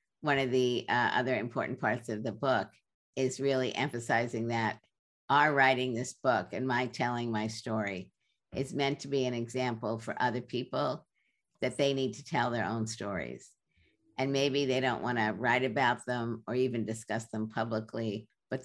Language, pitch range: English, 110-130 Hz